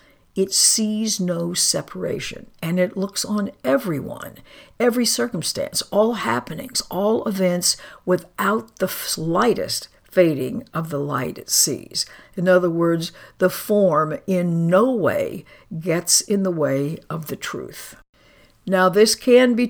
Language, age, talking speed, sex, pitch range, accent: English, 60-79, 130 wpm, female, 165-205 Hz, American